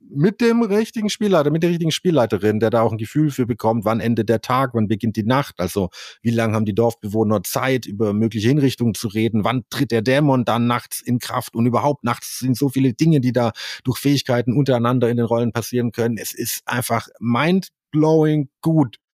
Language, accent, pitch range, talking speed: German, German, 110-140 Hz, 205 wpm